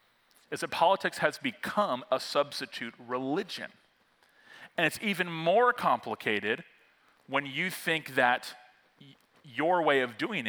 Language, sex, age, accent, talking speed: English, male, 40-59, American, 120 wpm